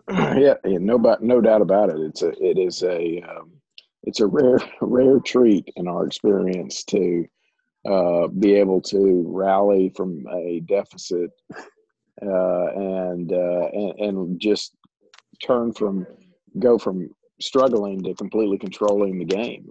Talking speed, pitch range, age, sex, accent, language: 140 wpm, 95-115 Hz, 50-69, male, American, English